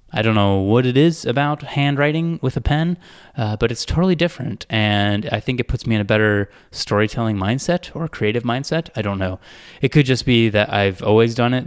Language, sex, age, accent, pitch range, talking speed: English, male, 20-39, American, 110-155 Hz, 215 wpm